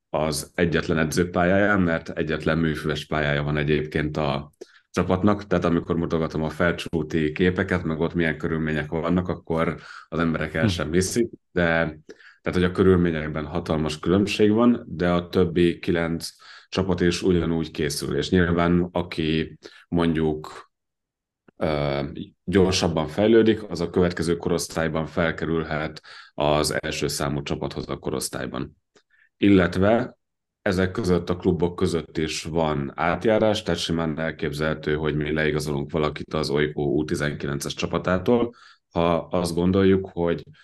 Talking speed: 125 wpm